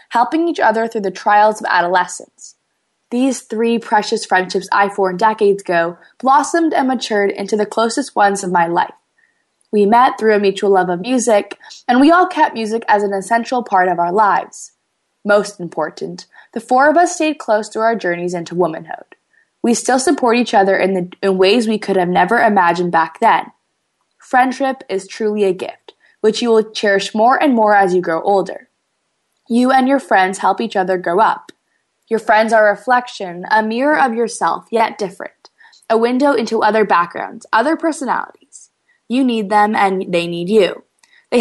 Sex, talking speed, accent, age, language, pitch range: female, 185 wpm, American, 20-39, English, 195-245 Hz